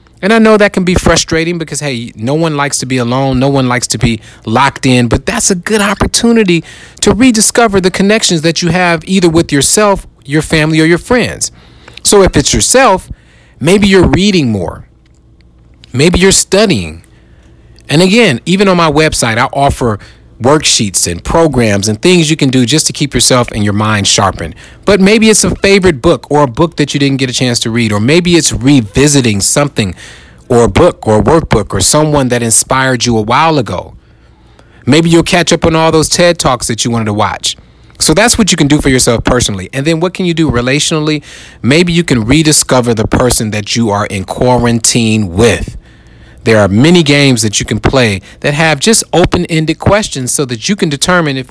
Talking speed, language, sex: 200 wpm, English, male